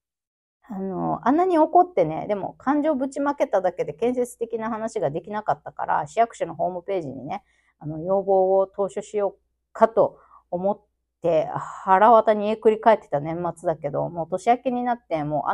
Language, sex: Japanese, female